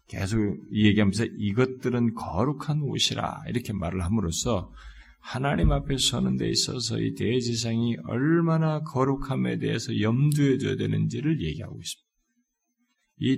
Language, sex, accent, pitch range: Korean, male, native, 95-140 Hz